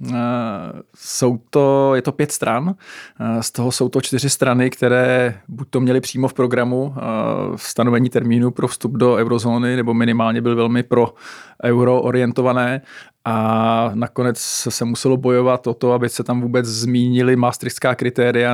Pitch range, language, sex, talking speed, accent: 115-130 Hz, Czech, male, 155 wpm, native